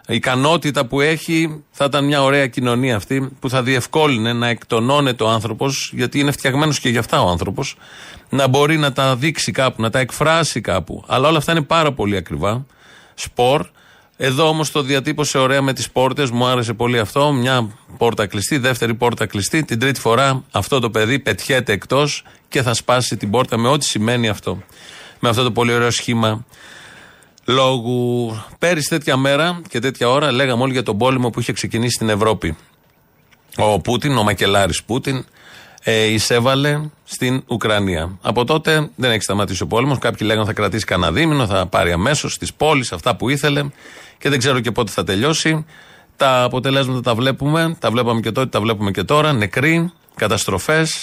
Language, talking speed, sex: Greek, 180 wpm, male